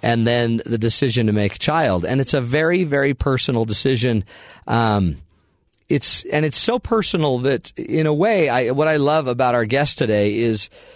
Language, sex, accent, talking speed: English, male, American, 185 wpm